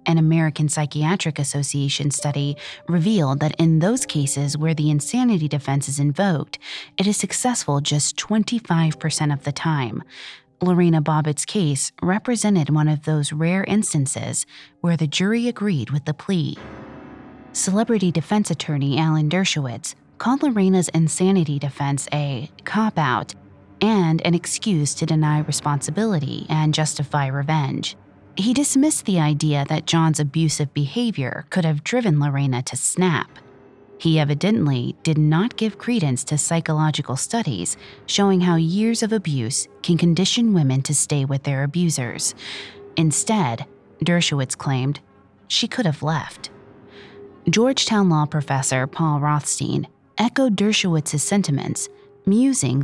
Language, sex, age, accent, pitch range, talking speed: English, female, 30-49, American, 145-190 Hz, 125 wpm